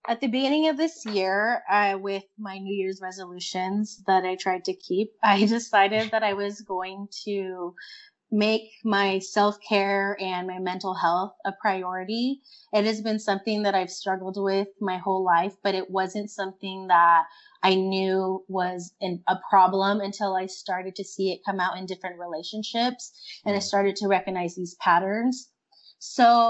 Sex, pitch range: female, 190-220 Hz